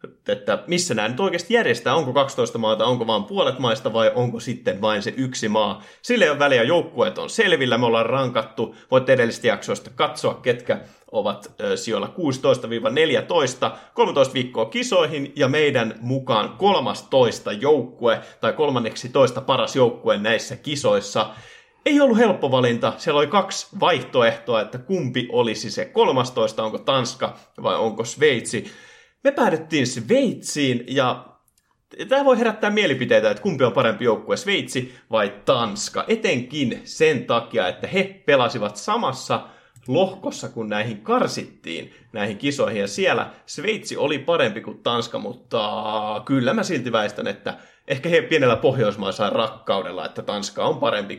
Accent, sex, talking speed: native, male, 140 wpm